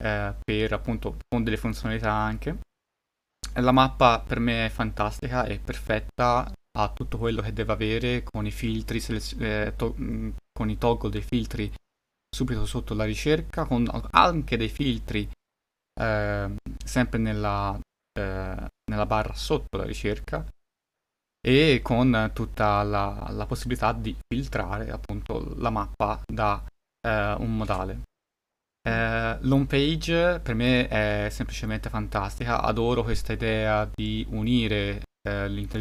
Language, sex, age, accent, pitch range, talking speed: Italian, male, 20-39, native, 105-120 Hz, 125 wpm